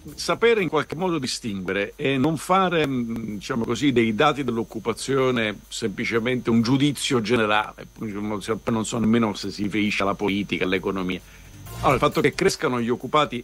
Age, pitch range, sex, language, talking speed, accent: 50-69, 105-140 Hz, male, Italian, 145 wpm, native